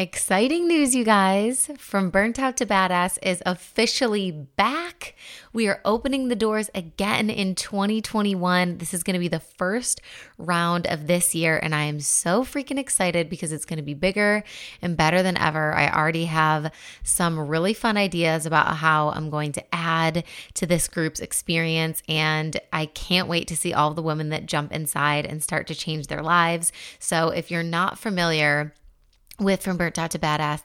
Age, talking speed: 20-39, 180 wpm